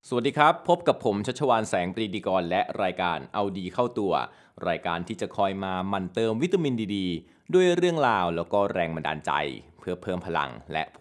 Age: 20-39